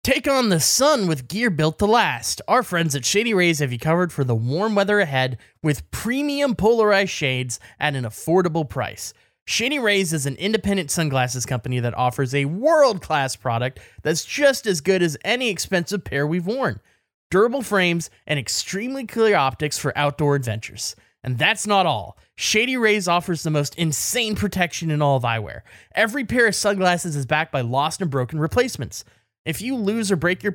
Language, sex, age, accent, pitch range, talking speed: English, male, 20-39, American, 140-205 Hz, 185 wpm